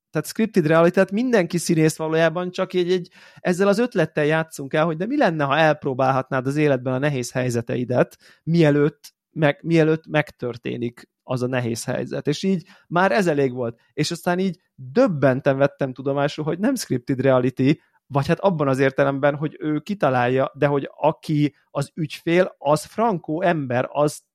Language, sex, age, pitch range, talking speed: Hungarian, male, 30-49, 130-165 Hz, 165 wpm